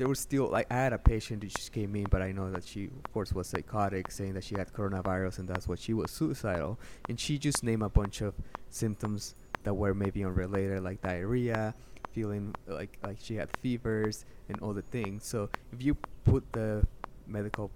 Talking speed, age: 210 wpm, 20-39